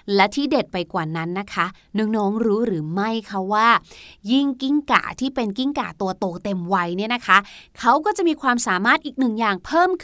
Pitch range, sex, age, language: 225-300 Hz, female, 20-39, Thai